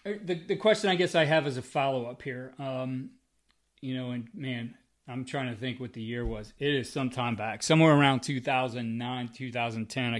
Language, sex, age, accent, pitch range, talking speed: English, male, 30-49, American, 125-145 Hz, 195 wpm